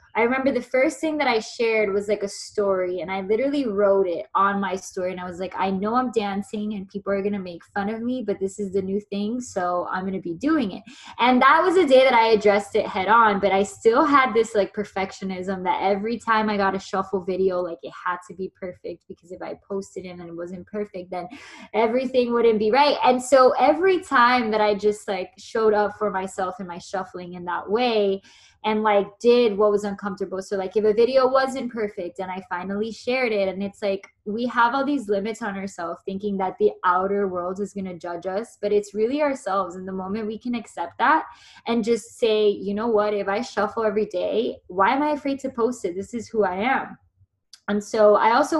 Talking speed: 235 wpm